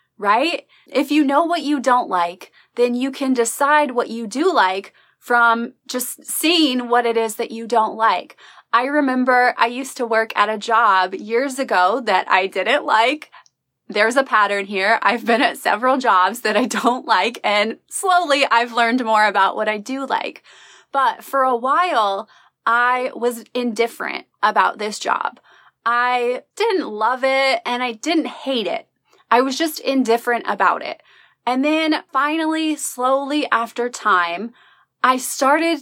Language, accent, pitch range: English, American, 215-270 Hz